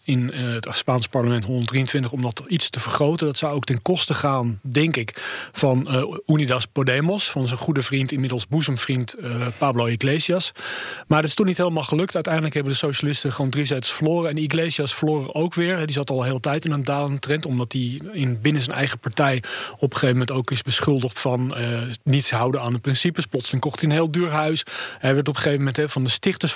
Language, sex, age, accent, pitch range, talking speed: English, male, 40-59, Dutch, 130-155 Hz, 220 wpm